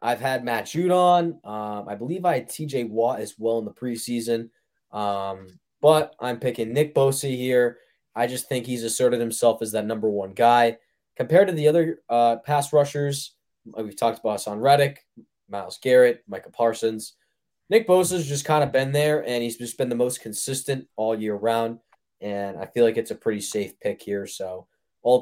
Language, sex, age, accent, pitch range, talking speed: English, male, 20-39, American, 115-155 Hz, 185 wpm